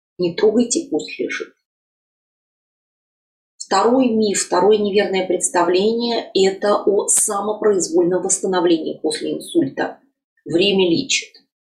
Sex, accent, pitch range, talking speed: female, native, 180-285 Hz, 85 wpm